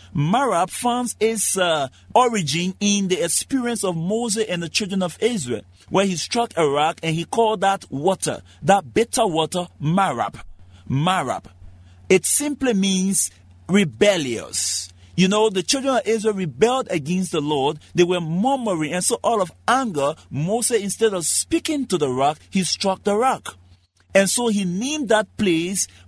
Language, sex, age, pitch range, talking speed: English, male, 50-69, 155-215 Hz, 160 wpm